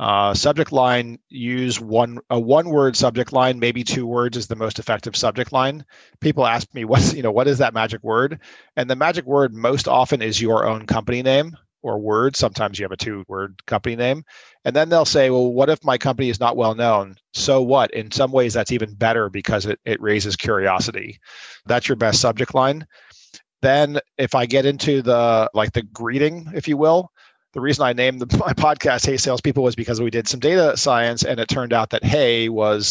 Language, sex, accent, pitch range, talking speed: English, male, American, 110-135 Hz, 210 wpm